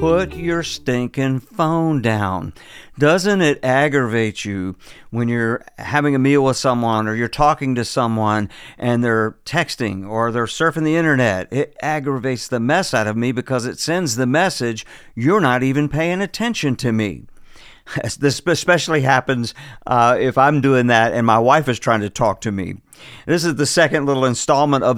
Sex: male